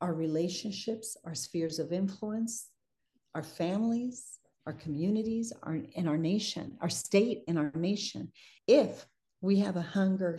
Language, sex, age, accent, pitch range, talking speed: English, female, 50-69, American, 170-200 Hz, 140 wpm